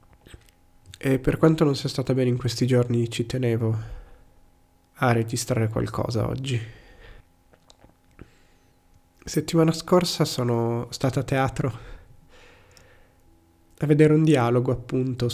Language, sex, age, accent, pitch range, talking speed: Italian, male, 30-49, native, 95-140 Hz, 105 wpm